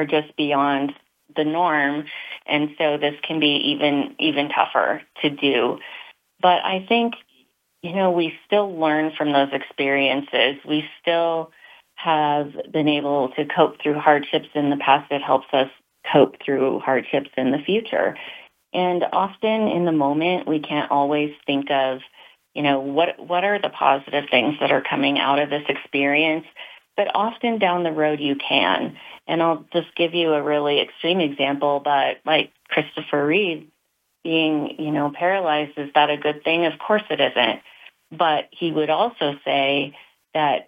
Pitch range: 140-165 Hz